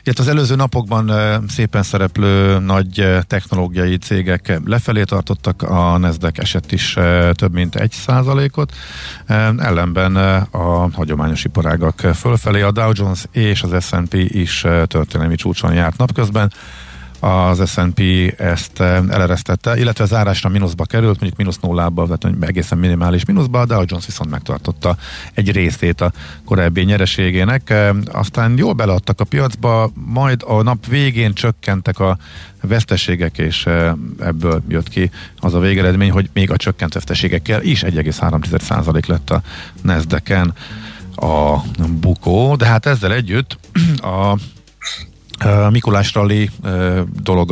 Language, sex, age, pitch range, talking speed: Hungarian, male, 50-69, 90-110 Hz, 135 wpm